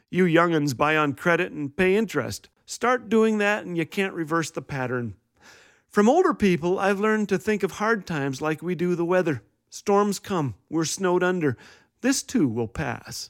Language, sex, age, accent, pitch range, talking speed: English, male, 40-59, American, 140-195 Hz, 185 wpm